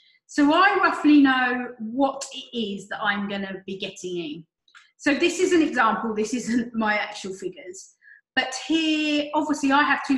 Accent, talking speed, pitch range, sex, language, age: British, 170 wpm, 215-280 Hz, female, English, 30-49